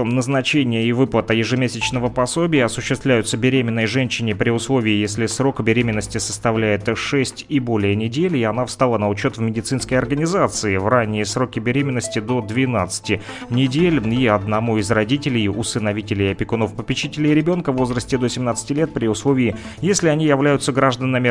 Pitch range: 110-135 Hz